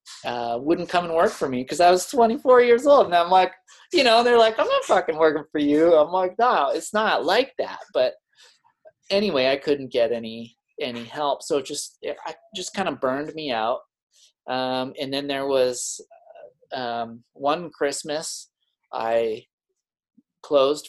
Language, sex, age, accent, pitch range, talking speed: English, male, 30-49, American, 125-175 Hz, 180 wpm